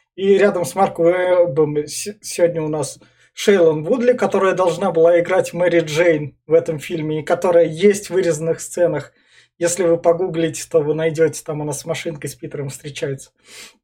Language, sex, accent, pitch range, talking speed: Russian, male, native, 160-205 Hz, 170 wpm